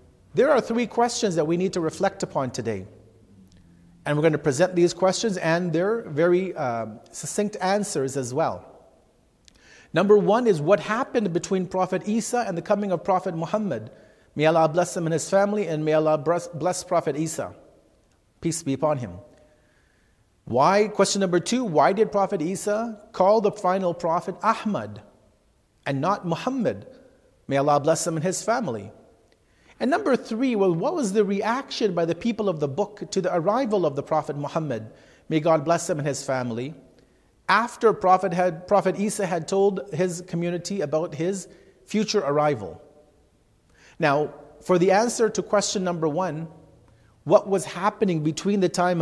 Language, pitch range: English, 155-205 Hz